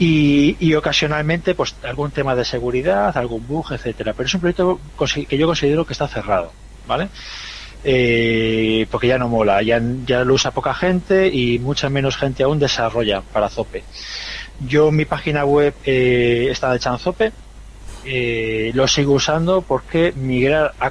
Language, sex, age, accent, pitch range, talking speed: Spanish, male, 30-49, Spanish, 120-150 Hz, 160 wpm